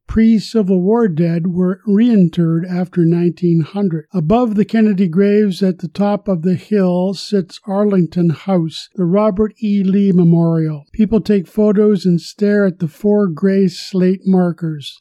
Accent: American